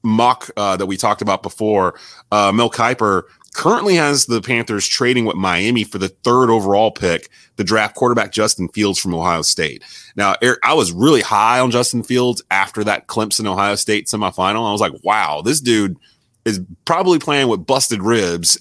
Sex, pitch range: male, 100-130 Hz